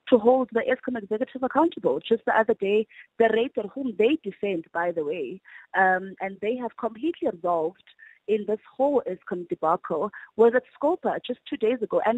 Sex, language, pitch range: female, English, 190-255 Hz